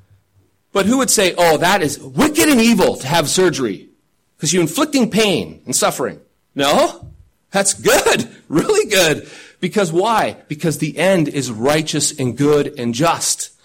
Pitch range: 145-195 Hz